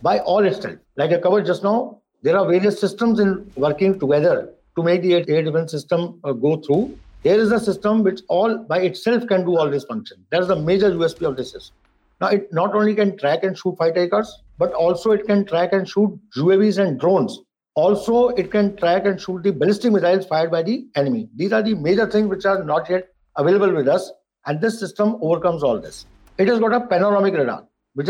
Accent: Indian